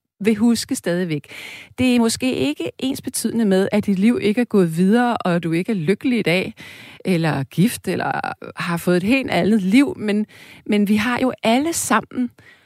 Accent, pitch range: native, 160-225 Hz